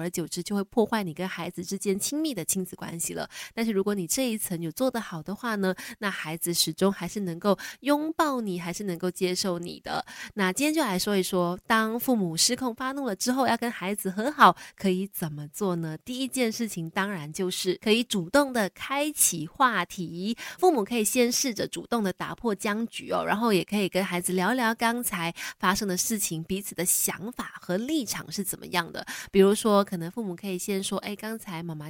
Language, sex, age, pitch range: Chinese, female, 20-39, 180-230 Hz